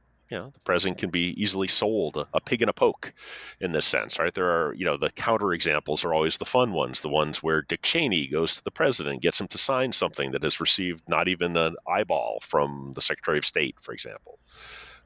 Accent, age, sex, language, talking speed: American, 40-59, male, English, 230 wpm